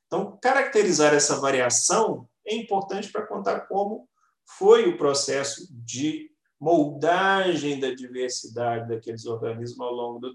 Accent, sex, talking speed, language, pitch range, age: Brazilian, male, 120 wpm, Portuguese, 125-185 Hz, 40-59